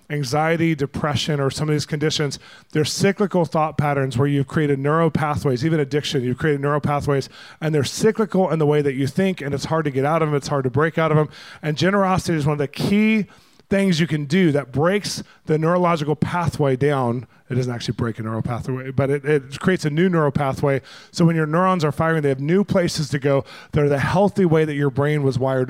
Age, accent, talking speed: 20-39, American, 225 wpm